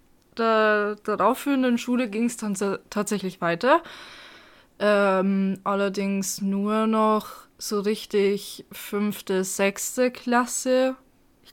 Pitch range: 195-225 Hz